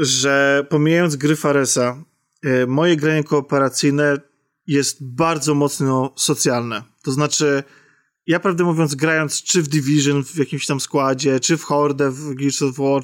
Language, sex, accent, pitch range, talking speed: Polish, male, native, 145-180 Hz, 145 wpm